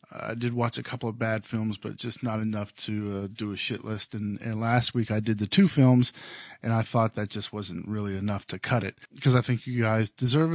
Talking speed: 250 wpm